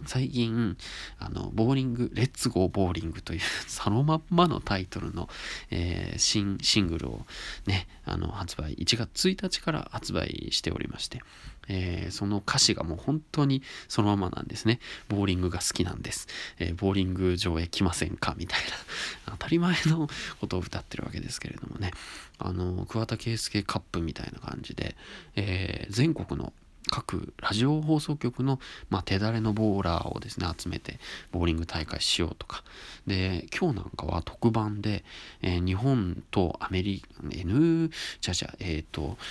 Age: 20-39